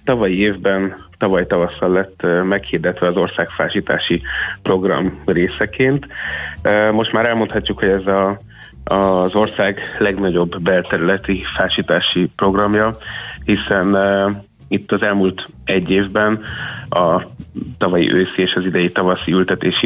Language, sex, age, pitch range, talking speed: Hungarian, male, 30-49, 90-100 Hz, 110 wpm